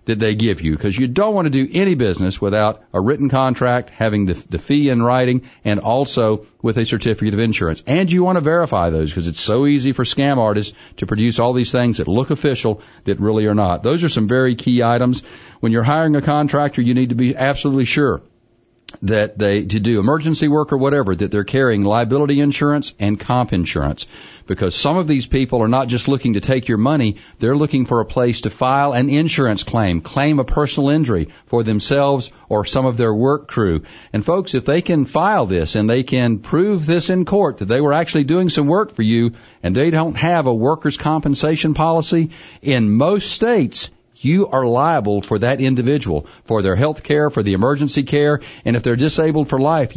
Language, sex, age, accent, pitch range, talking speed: English, male, 50-69, American, 110-145 Hz, 210 wpm